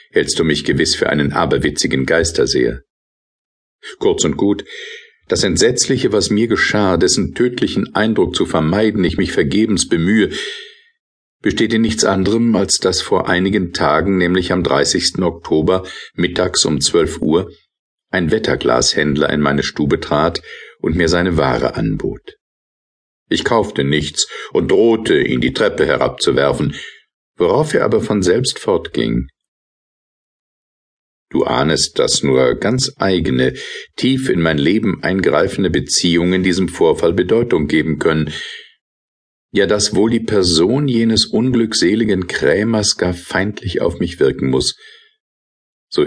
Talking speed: 130 wpm